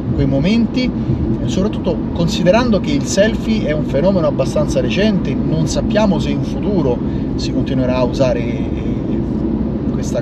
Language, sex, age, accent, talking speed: Italian, male, 30-49, native, 130 wpm